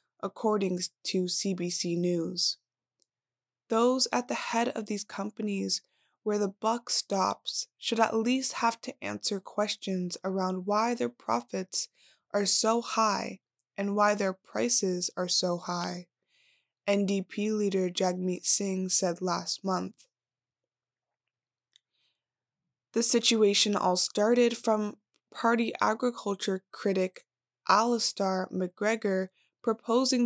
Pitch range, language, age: 190-225 Hz, English, 20-39